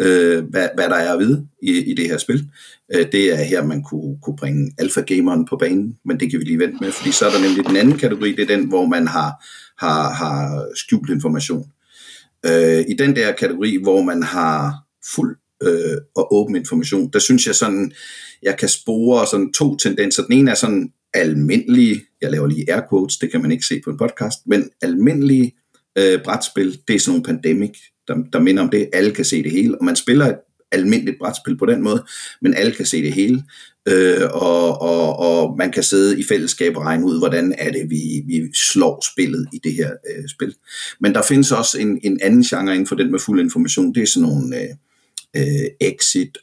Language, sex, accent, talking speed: Danish, male, native, 210 wpm